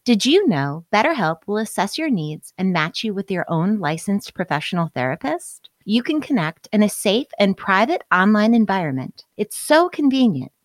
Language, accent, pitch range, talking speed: English, American, 180-240 Hz, 170 wpm